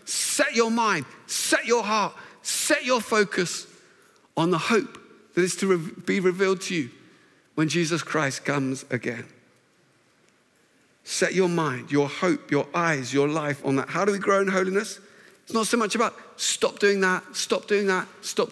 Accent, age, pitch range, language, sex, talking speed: British, 50-69, 165-205 Hz, English, male, 170 wpm